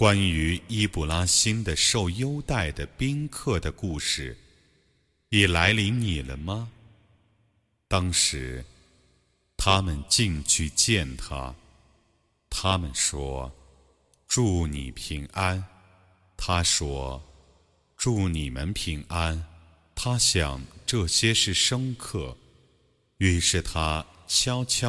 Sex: male